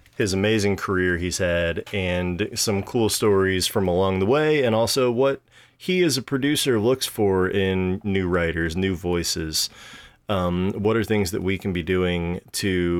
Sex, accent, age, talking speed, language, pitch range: male, American, 30-49, 170 wpm, English, 95-115 Hz